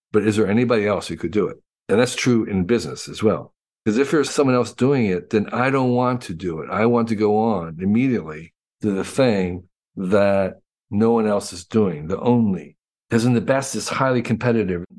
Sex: male